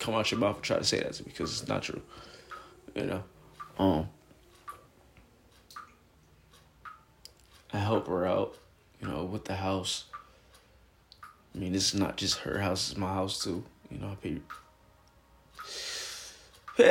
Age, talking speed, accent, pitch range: 20-39, 155 wpm, American, 100-125 Hz